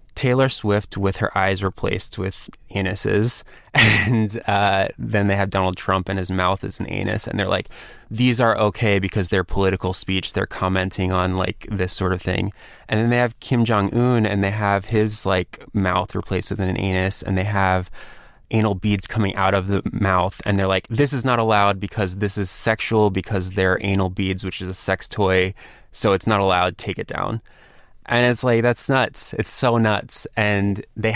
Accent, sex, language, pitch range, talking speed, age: American, male, English, 95-110 Hz, 195 wpm, 20-39